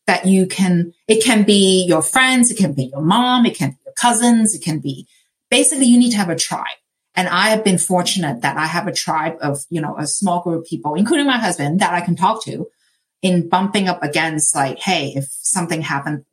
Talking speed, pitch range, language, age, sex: 230 wpm, 175-220 Hz, English, 30-49, female